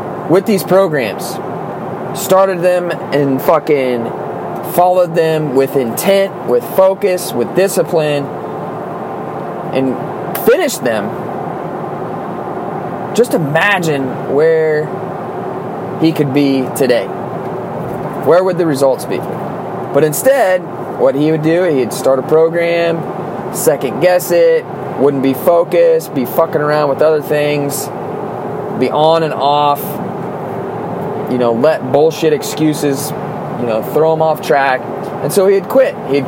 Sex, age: male, 20-39